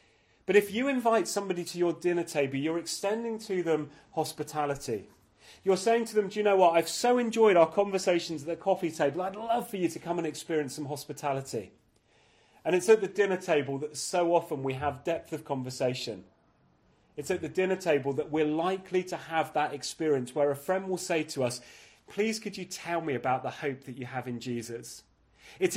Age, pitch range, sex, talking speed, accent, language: 30-49, 145-185 Hz, male, 205 wpm, British, English